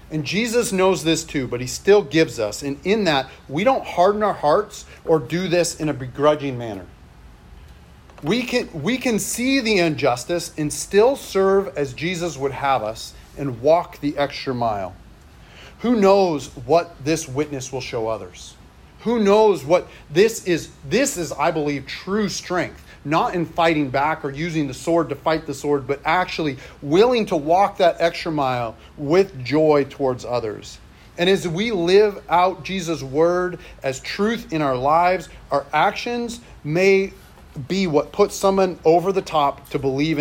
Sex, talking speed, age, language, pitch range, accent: male, 165 wpm, 40-59, English, 140-185 Hz, American